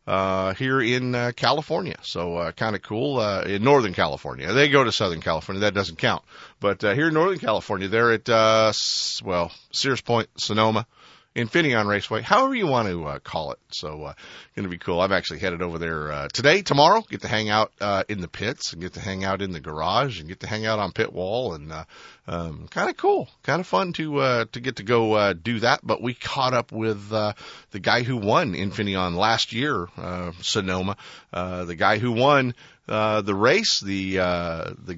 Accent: American